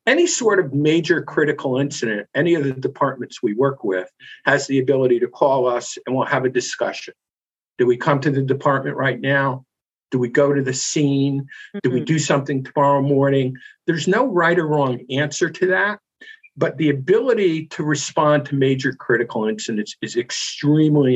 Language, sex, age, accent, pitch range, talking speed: English, male, 50-69, American, 130-210 Hz, 180 wpm